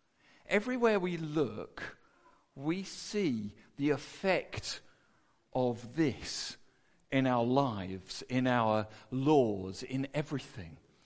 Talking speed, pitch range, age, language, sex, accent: 90 wpm, 115-190 Hz, 50-69, English, male, British